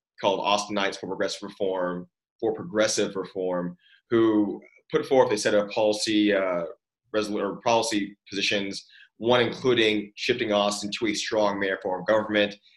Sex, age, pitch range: male, 20-39, 100-110 Hz